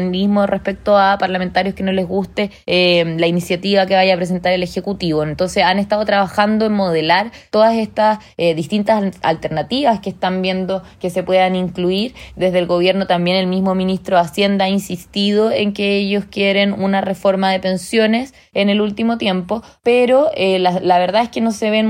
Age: 20-39